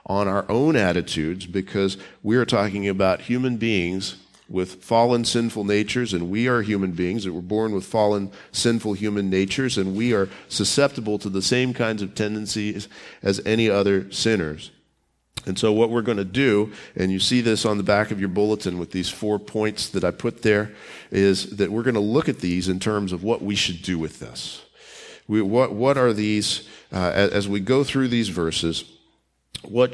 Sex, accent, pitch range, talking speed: male, American, 90-110 Hz, 195 wpm